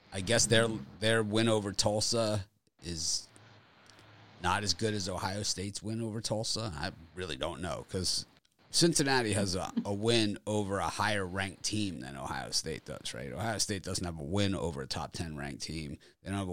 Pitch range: 90-115 Hz